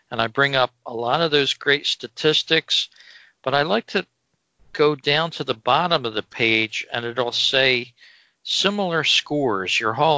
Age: 50-69